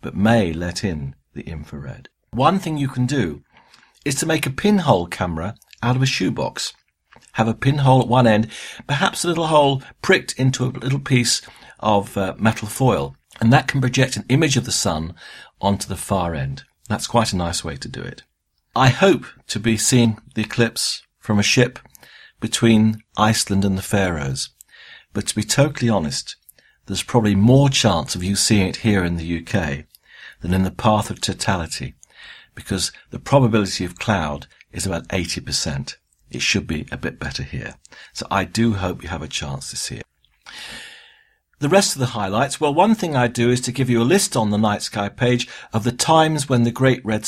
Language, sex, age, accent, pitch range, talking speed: English, male, 50-69, British, 100-125 Hz, 195 wpm